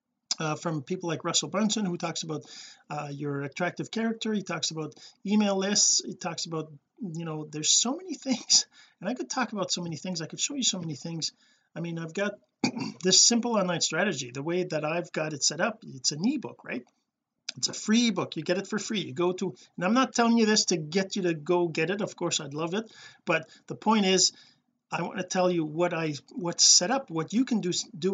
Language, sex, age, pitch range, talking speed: English, male, 40-59, 155-210 Hz, 235 wpm